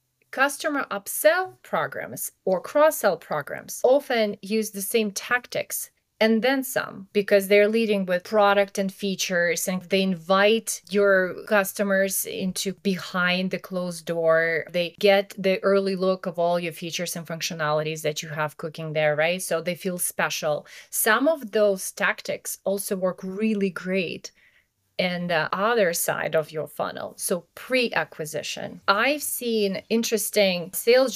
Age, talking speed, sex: 30-49, 140 wpm, female